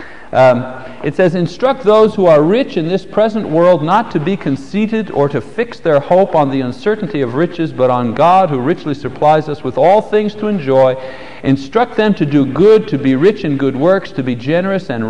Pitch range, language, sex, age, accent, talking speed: 130-185 Hz, English, male, 60-79, American, 210 wpm